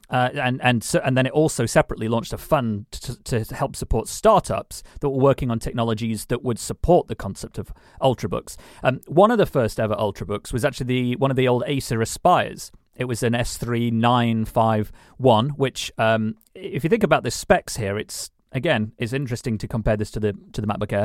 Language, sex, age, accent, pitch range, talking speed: English, male, 30-49, British, 110-135 Hz, 200 wpm